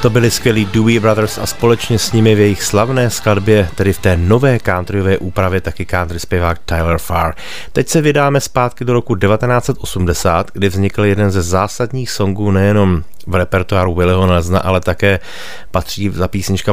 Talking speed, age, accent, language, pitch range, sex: 170 wpm, 30-49, native, Czech, 90-100 Hz, male